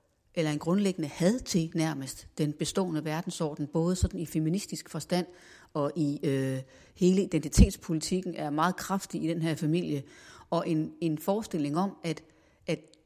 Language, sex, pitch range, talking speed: Danish, female, 150-185 Hz, 150 wpm